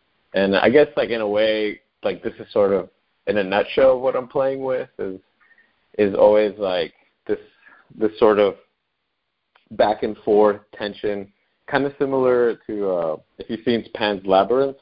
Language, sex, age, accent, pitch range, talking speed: English, male, 30-49, American, 90-110 Hz, 165 wpm